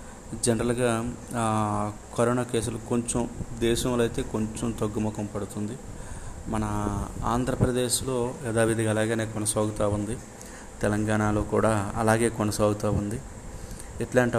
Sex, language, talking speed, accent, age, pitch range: male, Telugu, 90 wpm, native, 20-39, 105-120 Hz